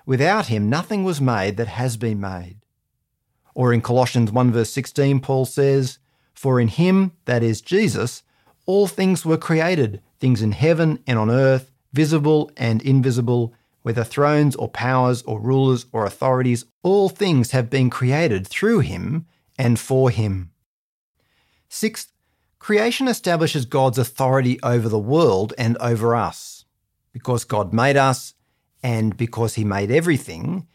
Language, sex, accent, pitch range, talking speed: English, male, Australian, 120-145 Hz, 145 wpm